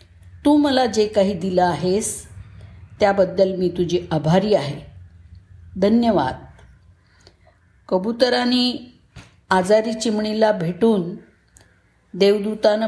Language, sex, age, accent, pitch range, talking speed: Marathi, female, 50-69, native, 140-215 Hz, 80 wpm